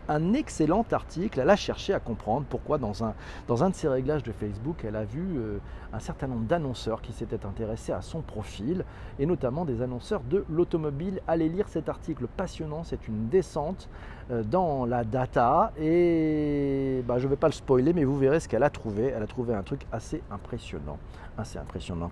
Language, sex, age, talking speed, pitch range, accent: French, male, 40-59, 195 wpm, 115-160 Hz, French